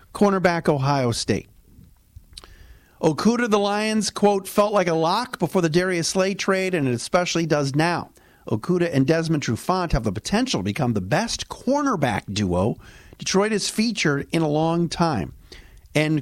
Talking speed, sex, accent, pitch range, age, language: 155 wpm, male, American, 115-170 Hz, 50-69, English